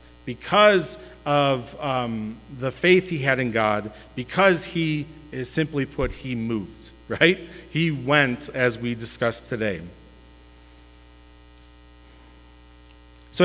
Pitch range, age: 120-165 Hz, 40-59